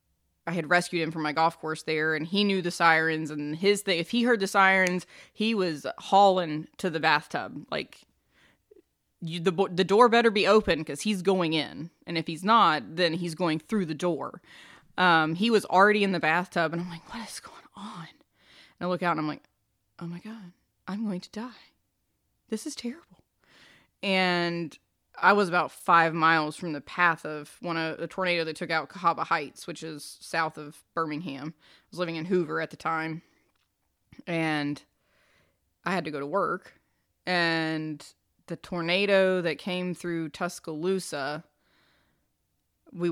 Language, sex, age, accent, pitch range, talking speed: English, female, 20-39, American, 155-185 Hz, 180 wpm